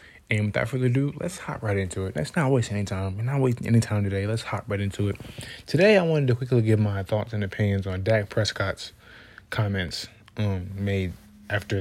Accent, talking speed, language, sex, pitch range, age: American, 215 wpm, English, male, 95-110 Hz, 20-39